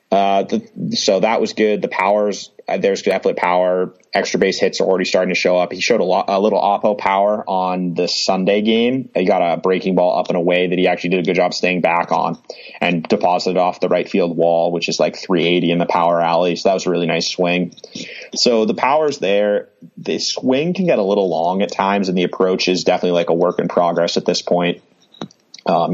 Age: 30-49